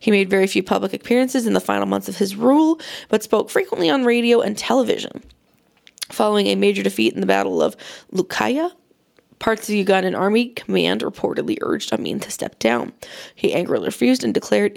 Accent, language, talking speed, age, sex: American, English, 185 wpm, 20-39, female